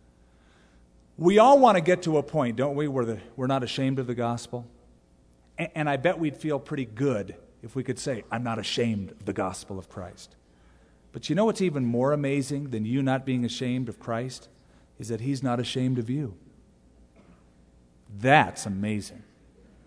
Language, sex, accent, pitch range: English, male, American, 90-150 Hz